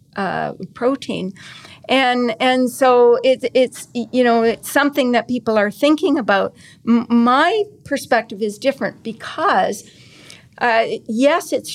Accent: American